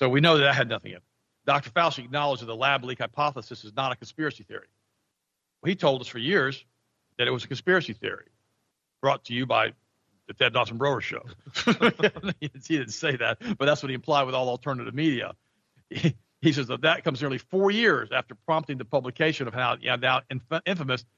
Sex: male